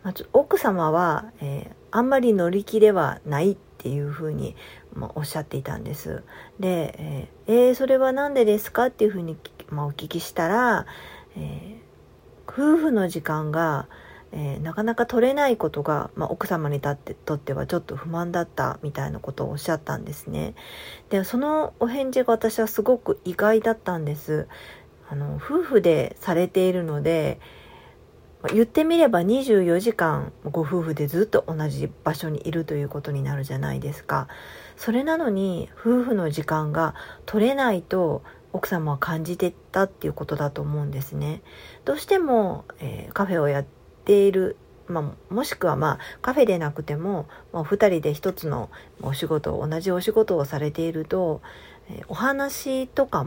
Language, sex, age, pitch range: Japanese, female, 40-59, 150-225 Hz